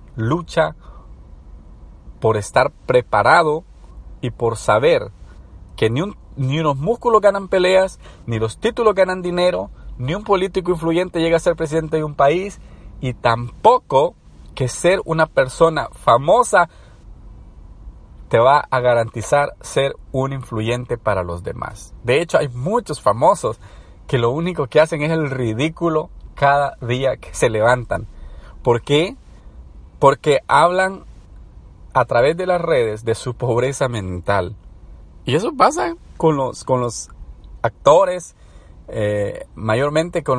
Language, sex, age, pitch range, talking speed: Spanish, male, 40-59, 110-165 Hz, 130 wpm